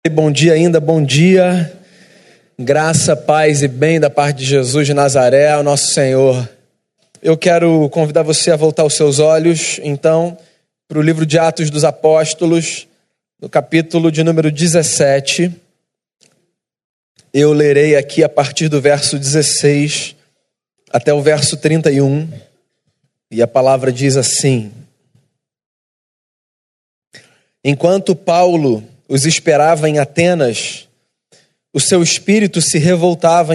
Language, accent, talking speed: Portuguese, Brazilian, 120 wpm